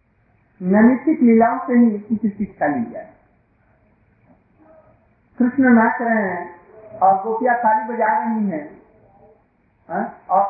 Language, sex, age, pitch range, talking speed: Hindi, male, 50-69, 190-255 Hz, 135 wpm